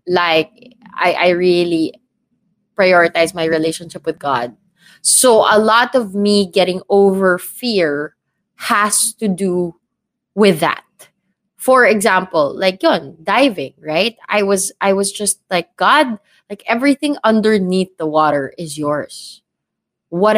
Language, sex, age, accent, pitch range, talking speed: English, female, 20-39, Filipino, 165-210 Hz, 125 wpm